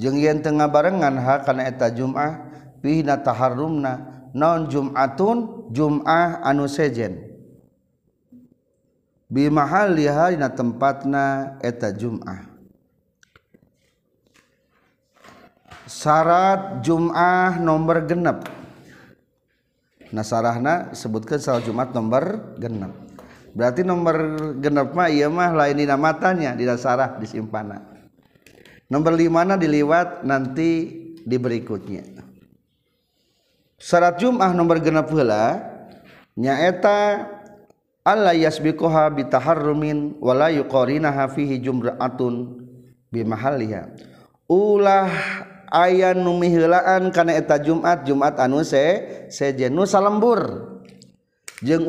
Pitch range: 125-165 Hz